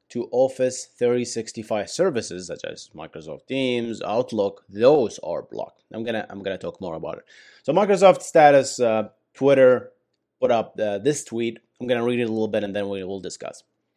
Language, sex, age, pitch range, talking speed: English, male, 30-49, 105-150 Hz, 180 wpm